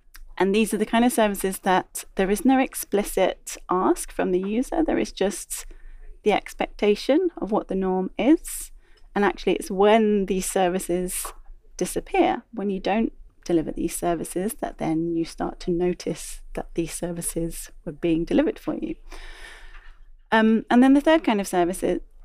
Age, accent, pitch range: 30-49, British, 180-245 Hz